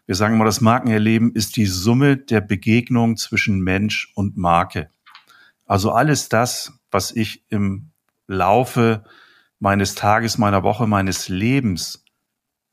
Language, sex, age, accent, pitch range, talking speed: German, male, 40-59, German, 95-115 Hz, 125 wpm